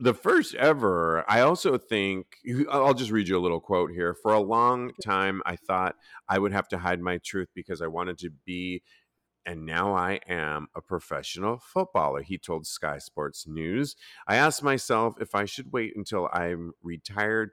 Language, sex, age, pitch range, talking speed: English, male, 40-59, 85-115 Hz, 185 wpm